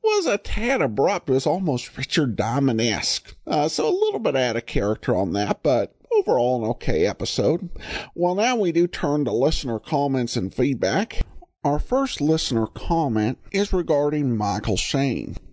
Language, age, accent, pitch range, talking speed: English, 50-69, American, 110-160 Hz, 165 wpm